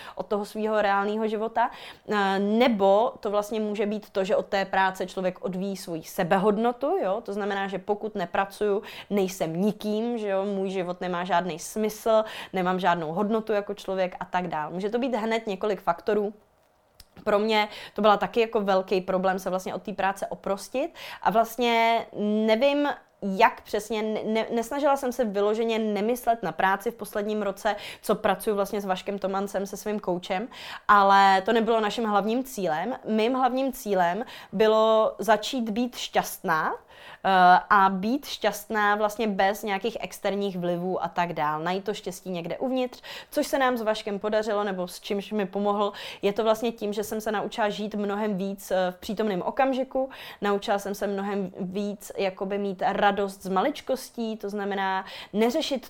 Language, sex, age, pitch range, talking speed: Czech, female, 20-39, 190-220 Hz, 165 wpm